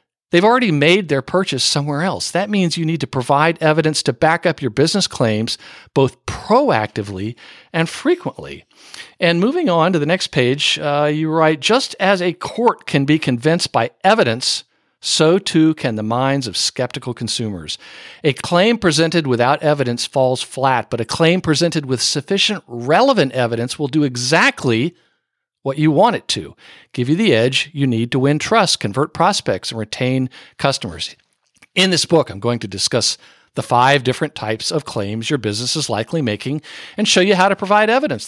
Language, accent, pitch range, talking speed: English, American, 125-165 Hz, 175 wpm